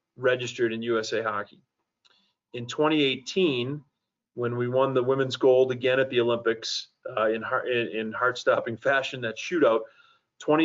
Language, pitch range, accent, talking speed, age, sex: English, 115-130 Hz, American, 140 wpm, 30-49, male